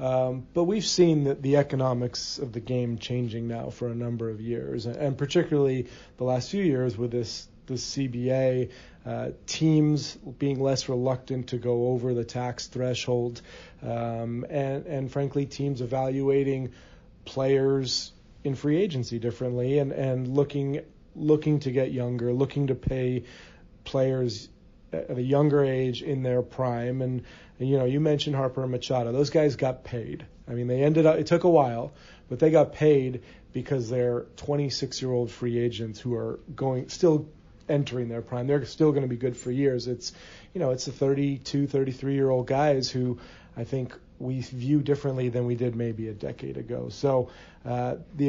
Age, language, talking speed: 40-59, English, 175 wpm